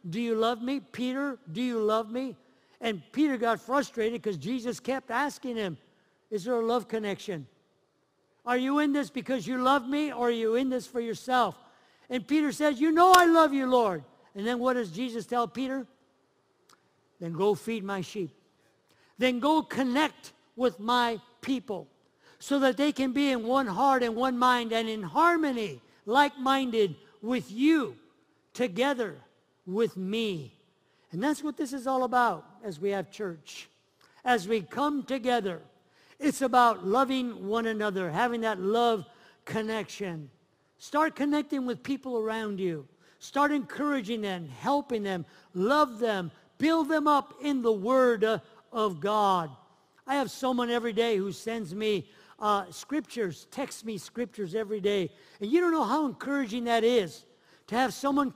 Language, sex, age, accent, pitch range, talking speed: English, male, 50-69, American, 210-270 Hz, 160 wpm